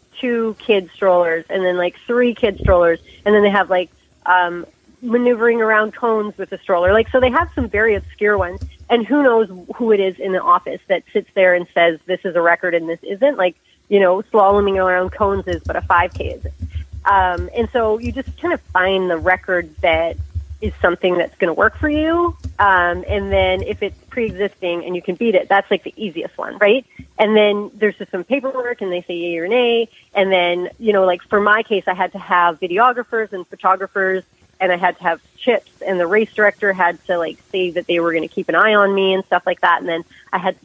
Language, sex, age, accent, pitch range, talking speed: English, female, 30-49, American, 175-215 Hz, 235 wpm